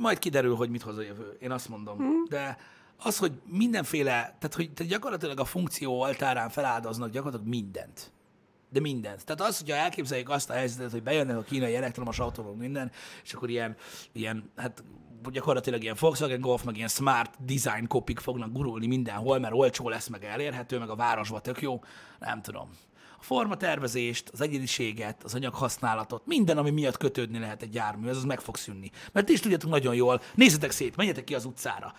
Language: Hungarian